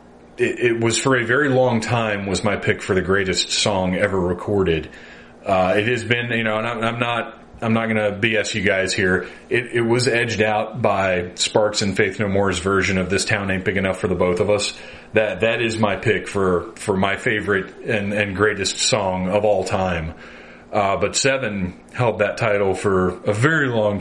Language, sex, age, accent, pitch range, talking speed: English, male, 30-49, American, 95-115 Hz, 205 wpm